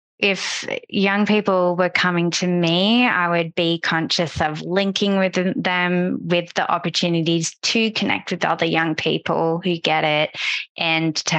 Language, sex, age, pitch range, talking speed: English, female, 20-39, 160-180 Hz, 155 wpm